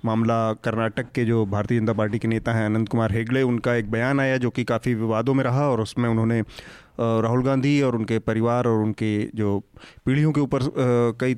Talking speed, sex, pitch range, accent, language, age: 200 wpm, male, 115-135 Hz, native, Hindi, 30-49